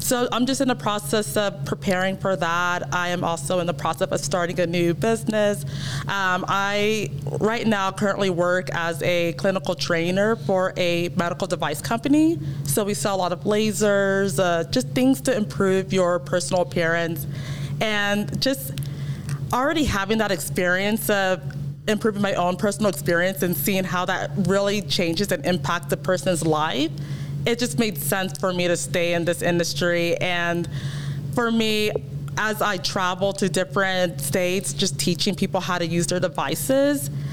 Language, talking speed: English, 165 wpm